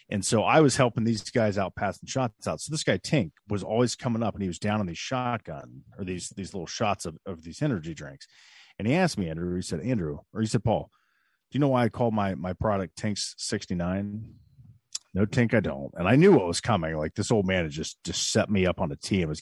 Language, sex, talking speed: English, male, 255 wpm